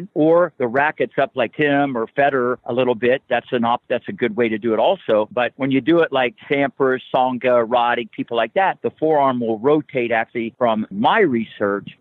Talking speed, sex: 210 wpm, male